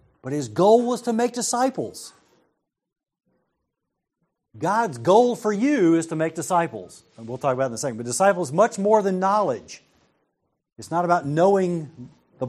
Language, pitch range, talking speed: English, 135-200 Hz, 165 wpm